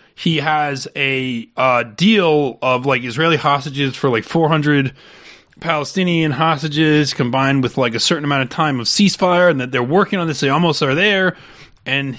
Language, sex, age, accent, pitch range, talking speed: English, male, 30-49, American, 125-185 Hz, 175 wpm